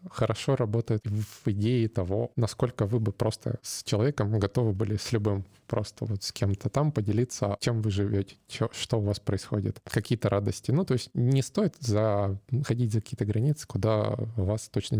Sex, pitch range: male, 105-125 Hz